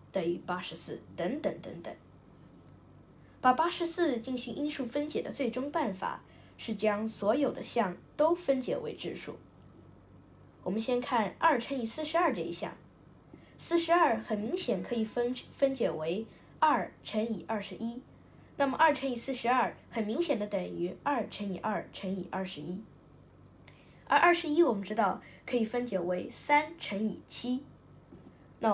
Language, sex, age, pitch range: Chinese, female, 10-29, 190-275 Hz